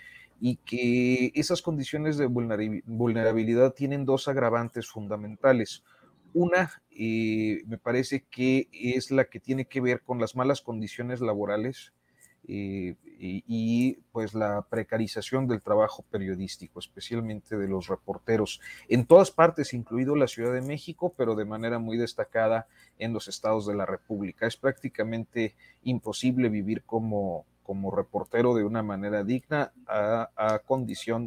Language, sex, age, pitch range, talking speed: Spanish, male, 40-59, 105-125 Hz, 135 wpm